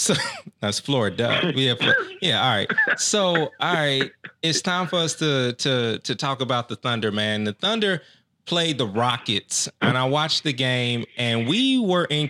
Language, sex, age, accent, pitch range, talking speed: English, male, 30-49, American, 115-140 Hz, 180 wpm